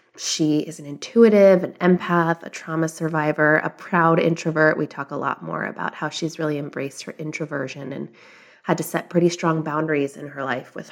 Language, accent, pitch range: English, American, 155-180 Hz